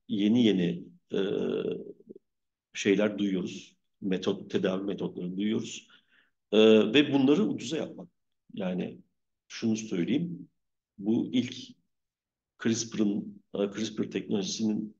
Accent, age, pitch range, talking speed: native, 50-69, 100-130 Hz, 90 wpm